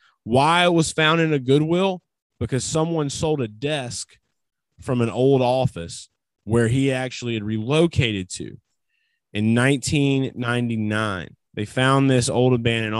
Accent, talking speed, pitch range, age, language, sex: American, 135 wpm, 110-135 Hz, 20-39, English, male